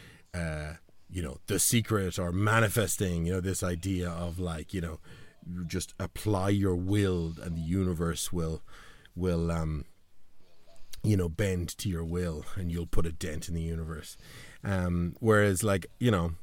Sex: male